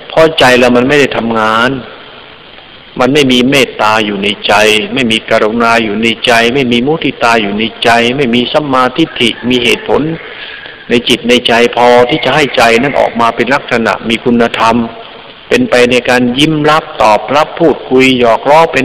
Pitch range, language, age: 115-150 Hz, Thai, 60-79